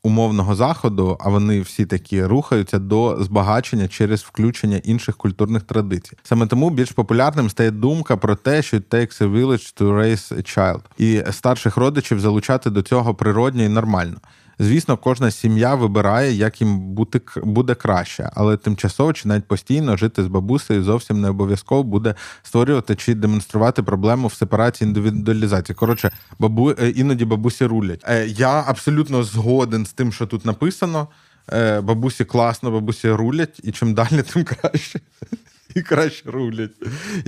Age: 20-39